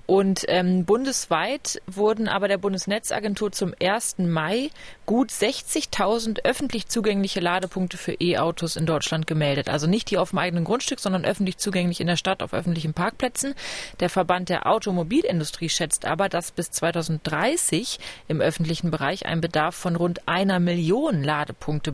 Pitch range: 180-210 Hz